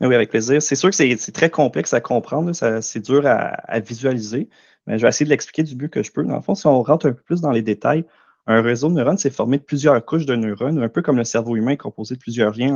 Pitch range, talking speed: 115-145 Hz, 295 wpm